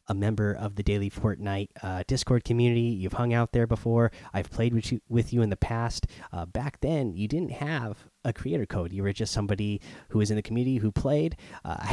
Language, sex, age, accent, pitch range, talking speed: English, male, 30-49, American, 100-120 Hz, 225 wpm